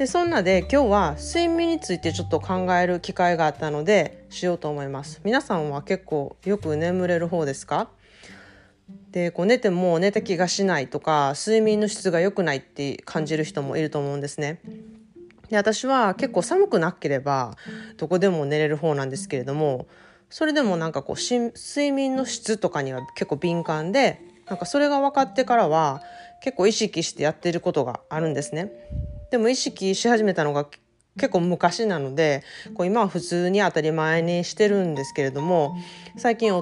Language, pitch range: Japanese, 150-215 Hz